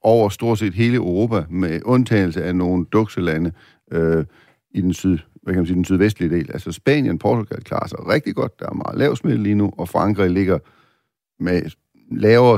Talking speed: 190 wpm